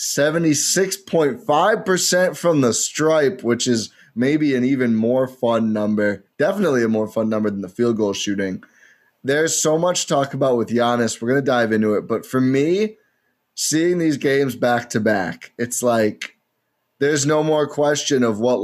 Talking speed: 170 wpm